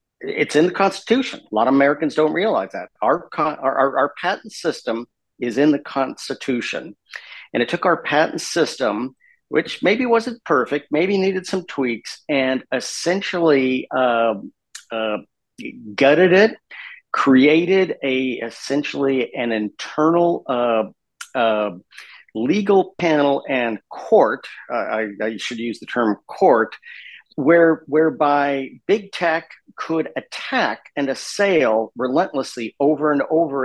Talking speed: 130 wpm